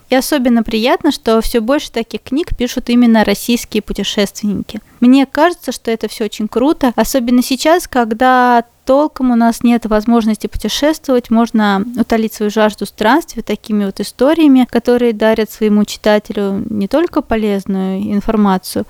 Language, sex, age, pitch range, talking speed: Russian, female, 20-39, 215-260 Hz, 140 wpm